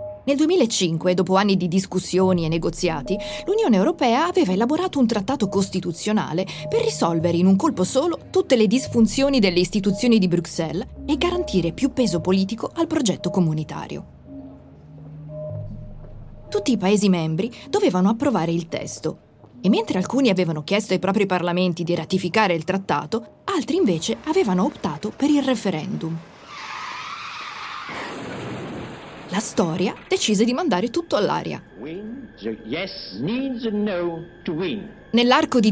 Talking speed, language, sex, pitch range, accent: 120 wpm, Italian, female, 175-235 Hz, native